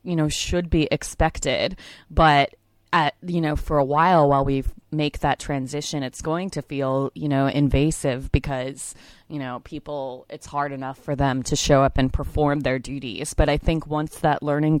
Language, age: English, 20-39